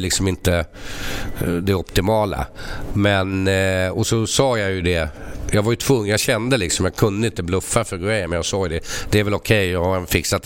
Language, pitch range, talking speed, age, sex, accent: English, 85-105 Hz, 200 wpm, 60-79, male, Swedish